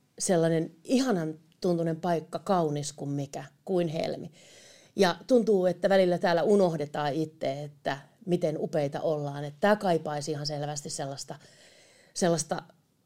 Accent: native